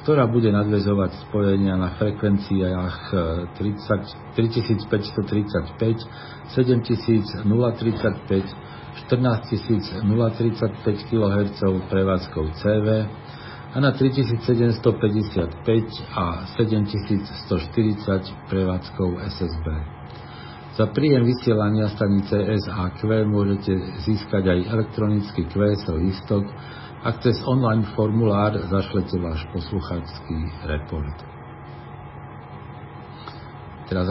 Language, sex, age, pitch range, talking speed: Slovak, male, 50-69, 95-115 Hz, 70 wpm